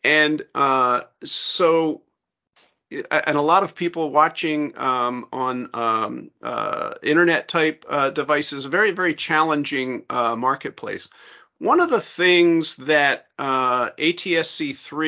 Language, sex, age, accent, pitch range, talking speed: English, male, 50-69, American, 125-175 Hz, 120 wpm